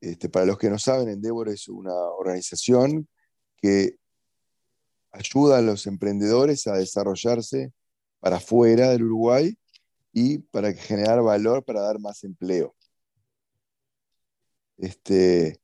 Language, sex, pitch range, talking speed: Spanish, male, 105-130 Hz, 115 wpm